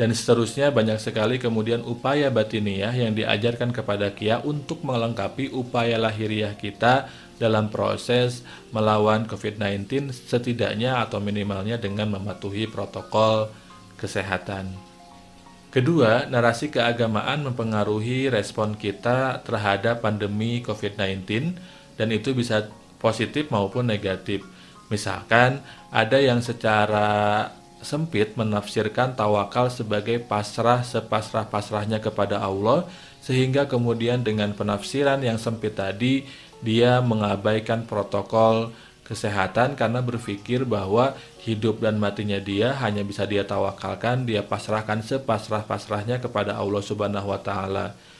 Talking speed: 105 wpm